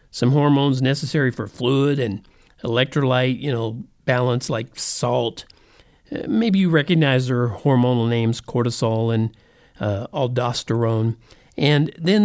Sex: male